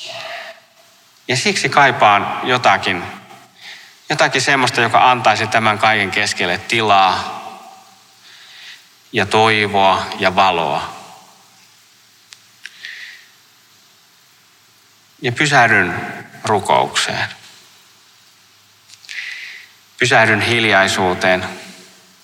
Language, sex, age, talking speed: Finnish, male, 30-49, 55 wpm